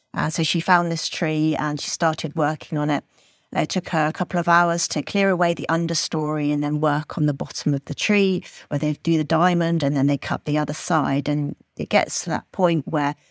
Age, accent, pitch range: 40-59, British, 160-185 Hz